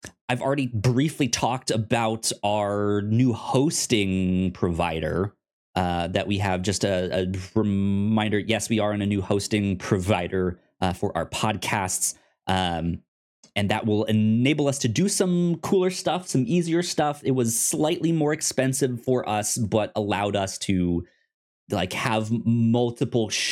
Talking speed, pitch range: 145 wpm, 95-130 Hz